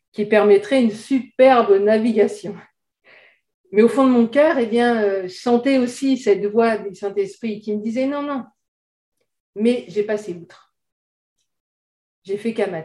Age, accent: 50-69, French